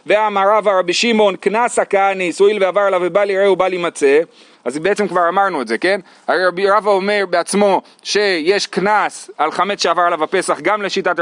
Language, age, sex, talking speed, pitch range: Hebrew, 30-49, male, 180 wpm, 180-235 Hz